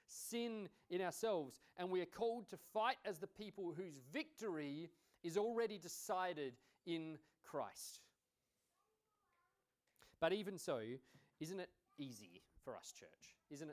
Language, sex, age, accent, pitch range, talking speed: English, male, 40-59, Australian, 120-170 Hz, 125 wpm